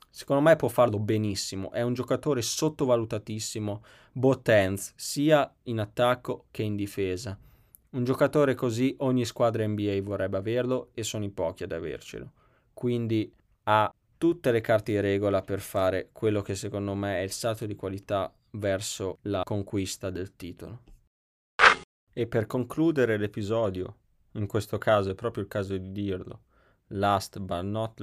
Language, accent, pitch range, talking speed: Italian, native, 95-115 Hz, 150 wpm